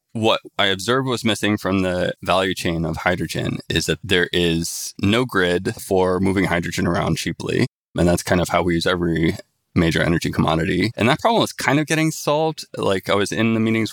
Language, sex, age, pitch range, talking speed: English, male, 20-39, 90-105 Hz, 205 wpm